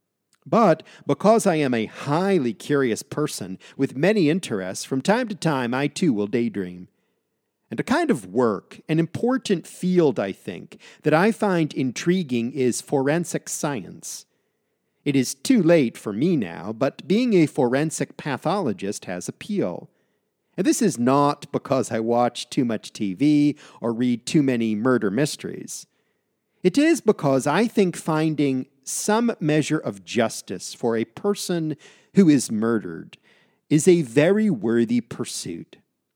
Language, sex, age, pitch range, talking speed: English, male, 50-69, 125-200 Hz, 145 wpm